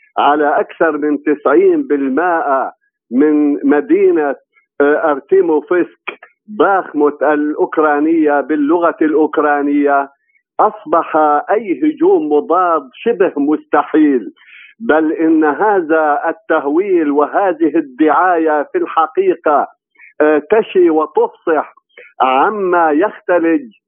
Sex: male